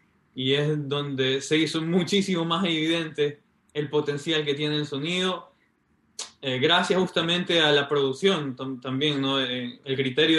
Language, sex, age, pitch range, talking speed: Spanish, male, 20-39, 130-150 Hz, 145 wpm